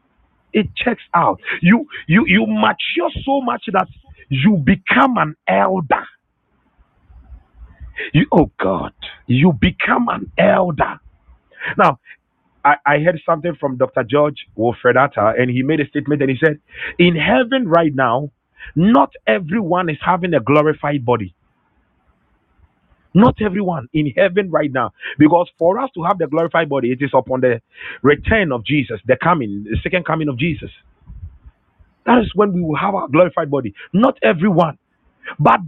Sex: male